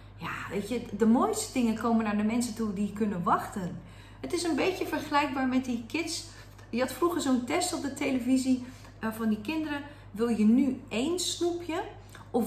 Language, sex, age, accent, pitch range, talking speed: Dutch, female, 30-49, Dutch, 205-265 Hz, 190 wpm